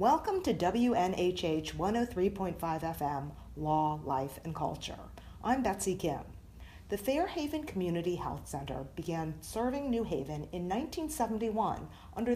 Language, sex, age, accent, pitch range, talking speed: English, female, 50-69, American, 155-230 Hz, 115 wpm